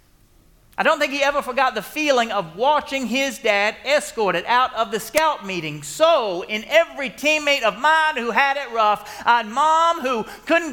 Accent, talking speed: American, 180 wpm